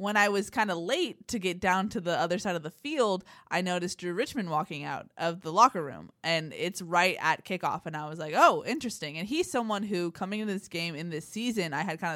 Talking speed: 250 wpm